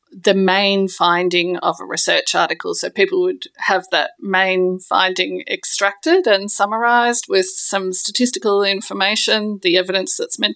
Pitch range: 185-255 Hz